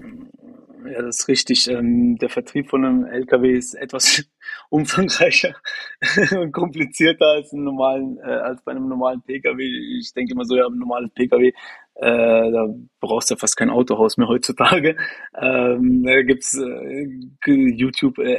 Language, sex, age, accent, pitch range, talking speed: German, male, 20-39, German, 130-170 Hz, 135 wpm